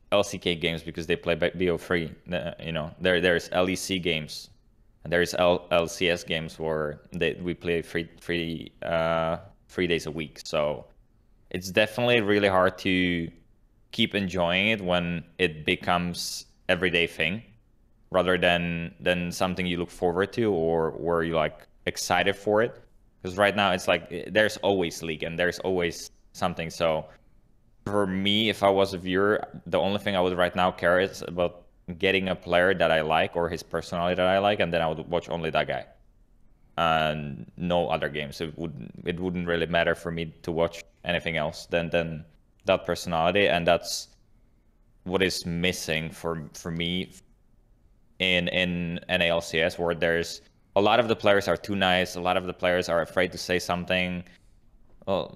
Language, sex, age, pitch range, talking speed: English, male, 20-39, 85-95 Hz, 170 wpm